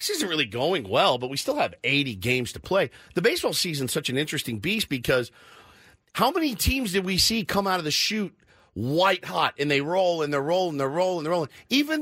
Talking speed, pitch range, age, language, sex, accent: 235 wpm, 135-195 Hz, 50-69, English, male, American